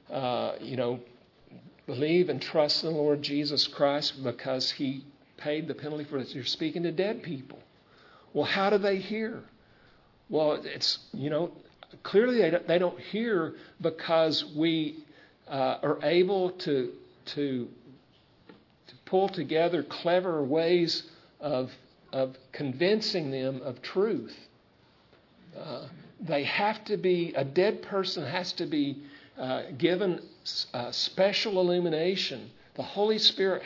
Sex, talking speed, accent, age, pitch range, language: male, 130 wpm, American, 50-69, 145-190 Hz, English